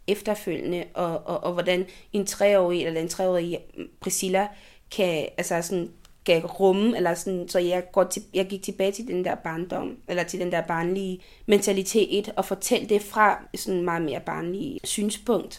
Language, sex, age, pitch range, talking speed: Danish, female, 20-39, 180-210 Hz, 175 wpm